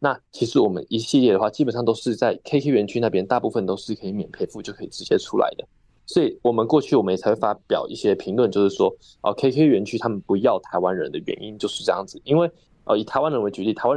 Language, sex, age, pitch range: Chinese, male, 20-39, 105-145 Hz